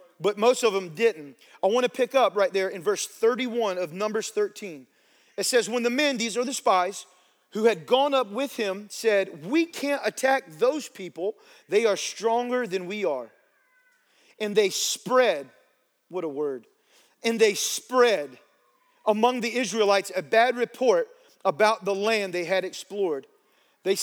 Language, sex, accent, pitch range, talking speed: English, male, American, 205-260 Hz, 165 wpm